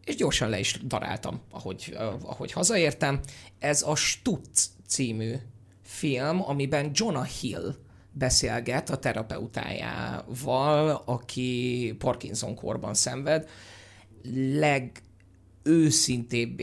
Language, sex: Hungarian, male